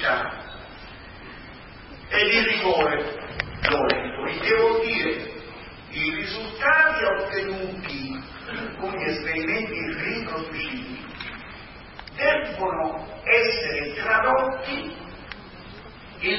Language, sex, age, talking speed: Italian, female, 40-59, 70 wpm